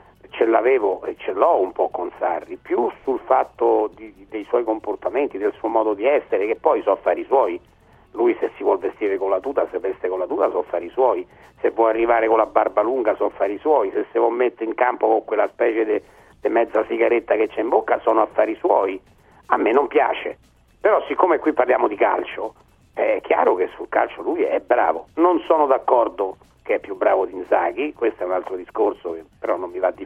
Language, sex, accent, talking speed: Italian, male, native, 220 wpm